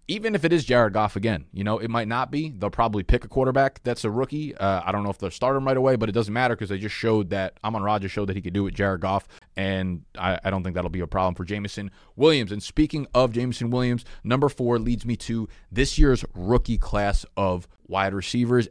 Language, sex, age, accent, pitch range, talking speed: English, male, 20-39, American, 100-125 Hz, 255 wpm